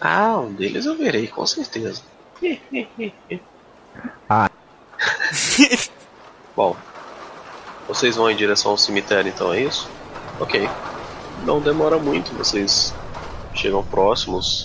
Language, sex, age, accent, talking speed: Portuguese, male, 20-39, Brazilian, 100 wpm